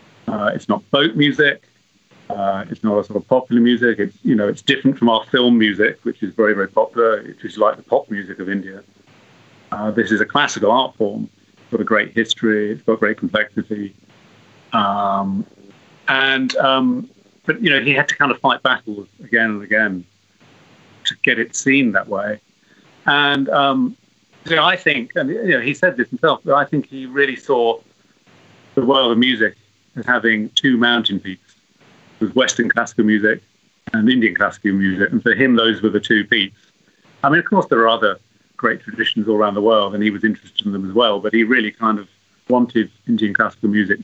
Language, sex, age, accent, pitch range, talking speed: English, male, 40-59, British, 100-130 Hz, 195 wpm